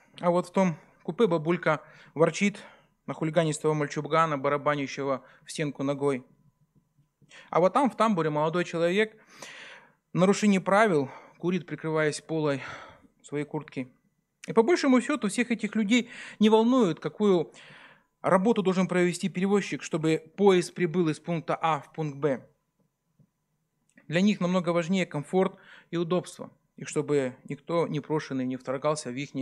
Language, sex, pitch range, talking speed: Russian, male, 150-190 Hz, 140 wpm